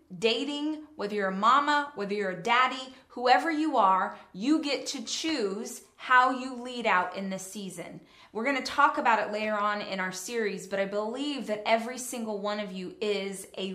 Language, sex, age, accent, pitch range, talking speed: English, female, 20-39, American, 210-260 Hz, 195 wpm